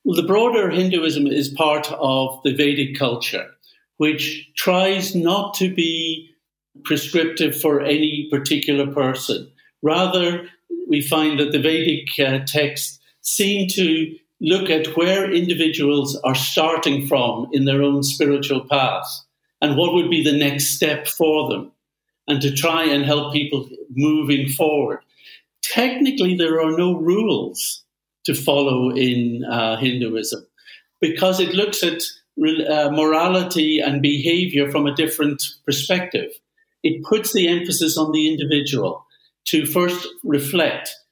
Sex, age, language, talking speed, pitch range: male, 60-79, English, 130 wpm, 145-175 Hz